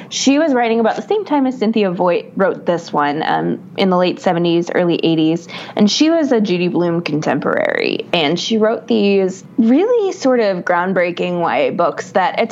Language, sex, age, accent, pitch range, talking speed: English, female, 20-39, American, 175-230 Hz, 185 wpm